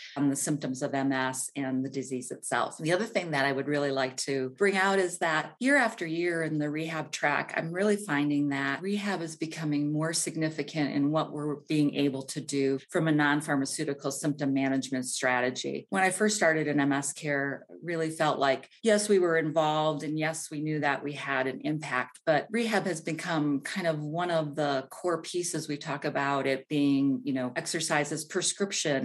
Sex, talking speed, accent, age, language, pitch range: female, 195 wpm, American, 40-59, English, 140-165 Hz